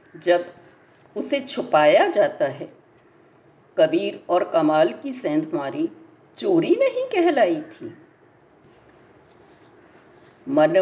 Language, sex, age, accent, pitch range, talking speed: Hindi, female, 50-69, native, 270-350 Hz, 85 wpm